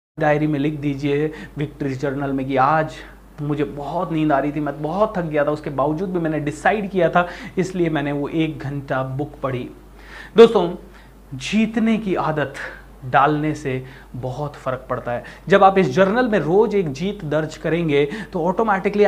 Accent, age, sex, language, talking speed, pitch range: native, 30-49, male, Hindi, 175 wpm, 150-210 Hz